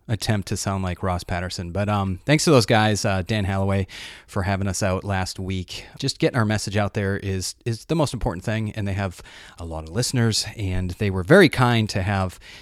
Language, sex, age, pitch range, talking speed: English, male, 30-49, 100-130 Hz, 225 wpm